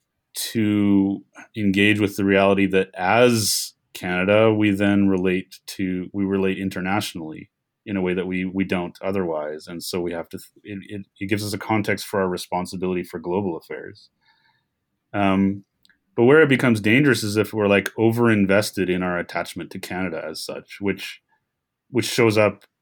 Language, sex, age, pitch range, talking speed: English, male, 30-49, 95-105 Hz, 165 wpm